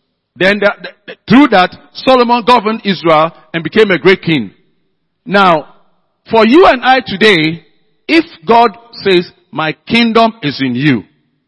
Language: English